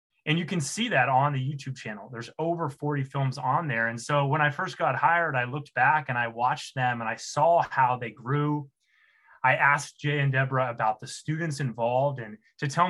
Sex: male